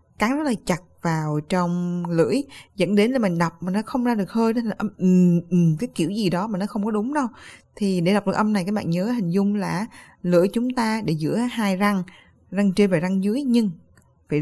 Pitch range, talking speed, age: 165-215 Hz, 235 wpm, 20-39